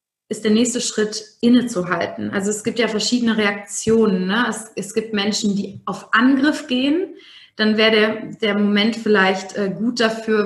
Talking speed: 160 wpm